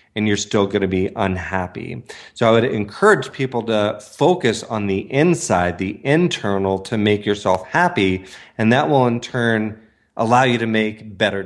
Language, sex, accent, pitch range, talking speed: English, male, American, 100-125 Hz, 175 wpm